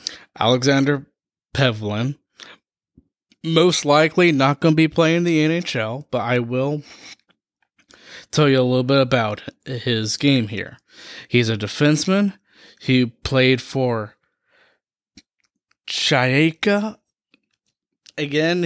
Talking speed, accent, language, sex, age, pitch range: 100 wpm, American, English, male, 20-39, 120-150 Hz